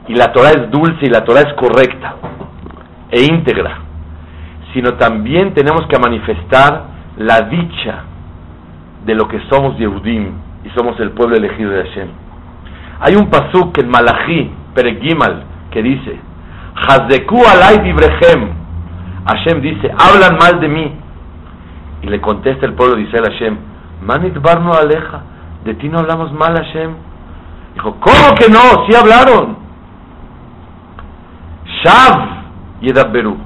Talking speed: 135 wpm